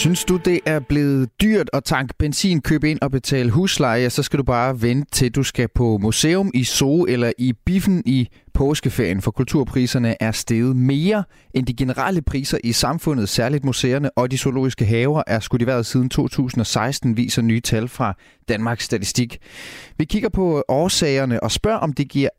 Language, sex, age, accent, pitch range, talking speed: Danish, male, 30-49, native, 120-150 Hz, 180 wpm